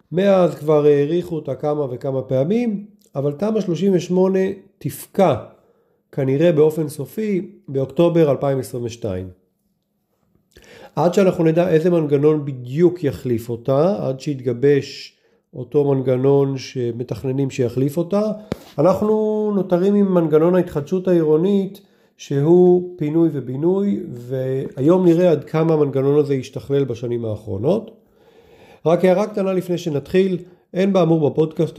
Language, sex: Hebrew, male